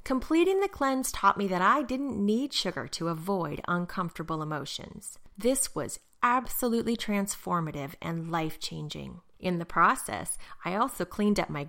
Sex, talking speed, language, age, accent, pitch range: female, 145 wpm, English, 30-49, American, 165-220 Hz